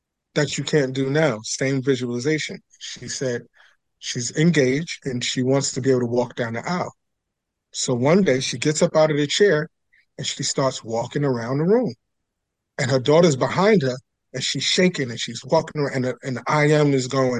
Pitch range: 135-170 Hz